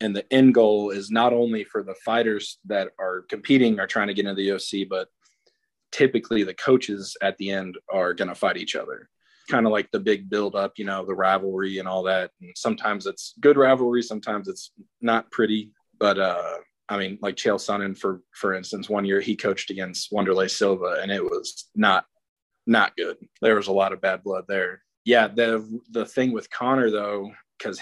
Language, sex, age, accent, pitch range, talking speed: English, male, 20-39, American, 95-115 Hz, 205 wpm